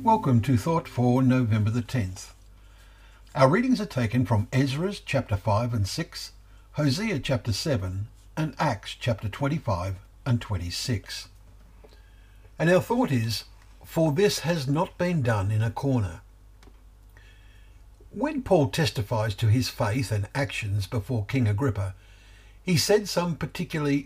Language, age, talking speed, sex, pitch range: English, 60-79, 135 wpm, male, 100-135 Hz